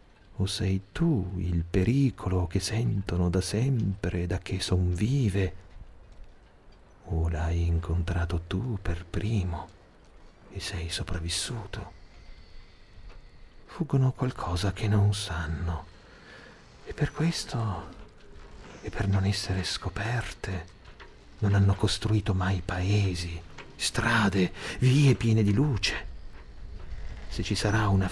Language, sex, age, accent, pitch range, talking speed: Italian, male, 40-59, native, 85-100 Hz, 100 wpm